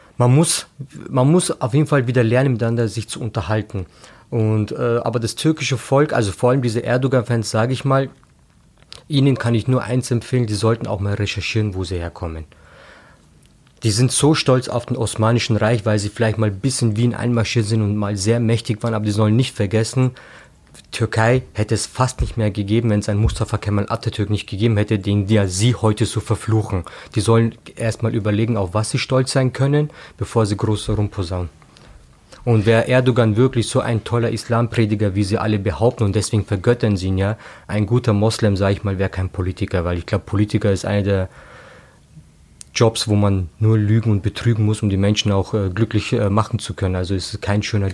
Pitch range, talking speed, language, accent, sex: 105-120 Hz, 205 wpm, German, German, male